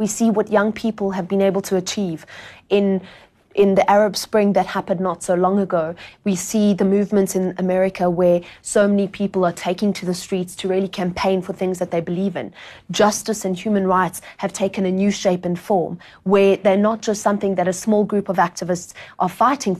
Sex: female